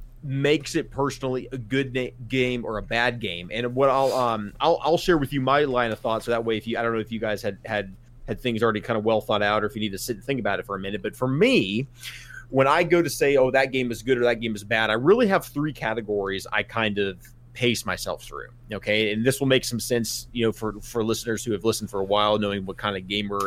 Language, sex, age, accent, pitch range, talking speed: English, male, 30-49, American, 110-140 Hz, 280 wpm